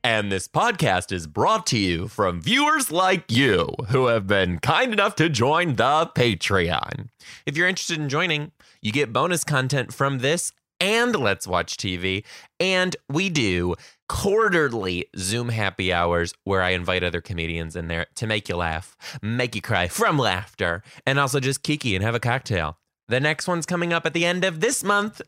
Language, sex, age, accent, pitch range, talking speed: English, male, 20-39, American, 100-155 Hz, 185 wpm